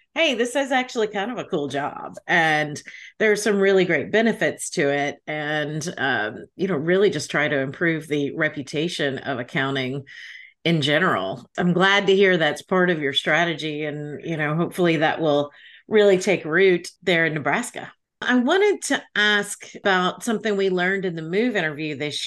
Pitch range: 160-195 Hz